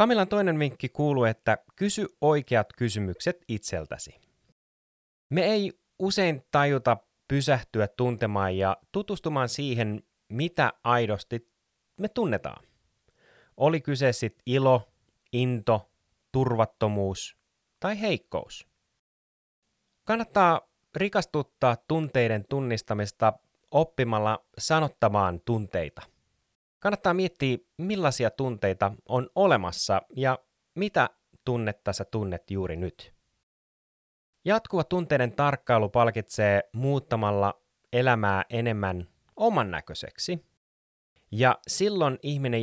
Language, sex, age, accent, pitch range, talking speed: Finnish, male, 30-49, native, 105-145 Hz, 85 wpm